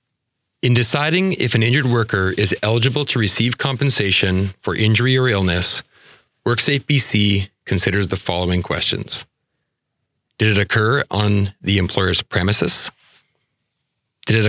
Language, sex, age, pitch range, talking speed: English, male, 30-49, 95-120 Hz, 125 wpm